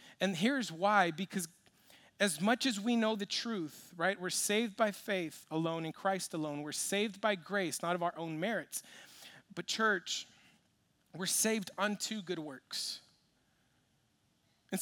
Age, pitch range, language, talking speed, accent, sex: 40-59, 175-220 Hz, English, 150 wpm, American, male